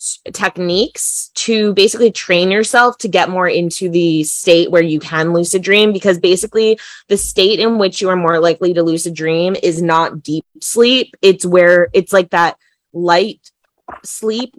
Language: English